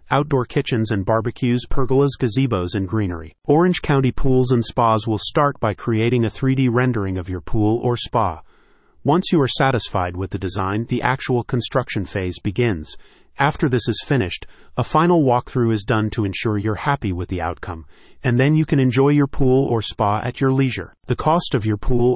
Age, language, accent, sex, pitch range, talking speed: 40-59, English, American, male, 105-135 Hz, 190 wpm